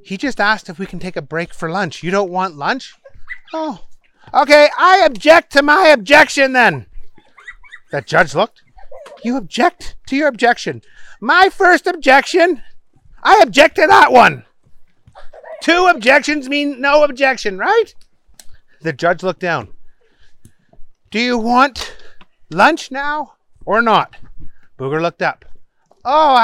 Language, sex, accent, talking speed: English, male, American, 135 wpm